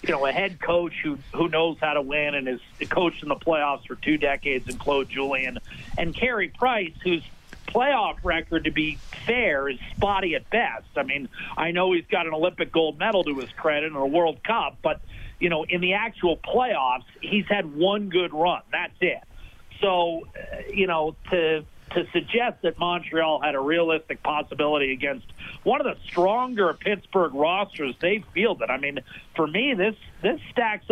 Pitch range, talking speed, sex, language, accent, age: 155-200 Hz, 190 wpm, male, English, American, 50-69